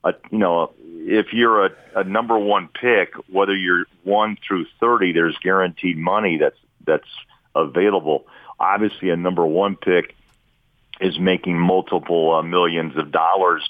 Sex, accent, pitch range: male, American, 85-100 Hz